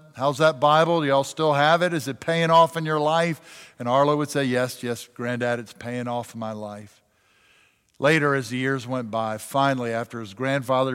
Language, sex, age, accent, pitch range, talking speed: English, male, 50-69, American, 125-165 Hz, 215 wpm